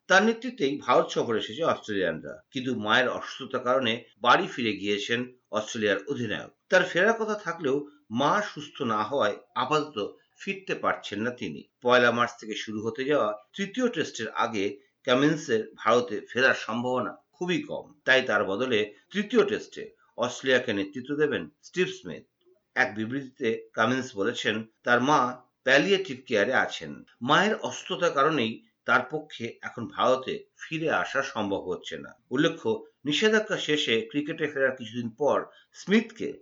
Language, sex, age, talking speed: Bengali, male, 50-69, 90 wpm